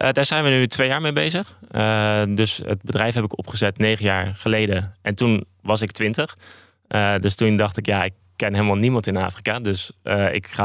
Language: Dutch